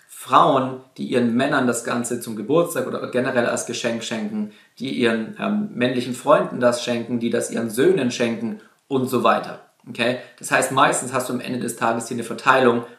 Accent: German